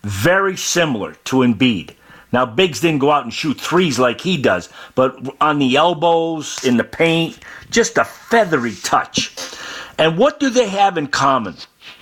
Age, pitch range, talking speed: 50-69, 125-160 Hz, 165 wpm